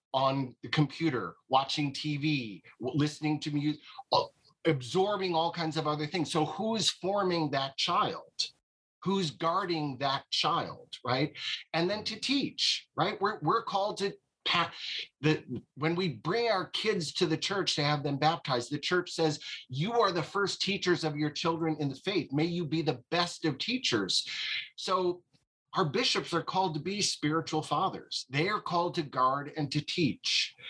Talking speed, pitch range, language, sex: 165 wpm, 145-175 Hz, English, male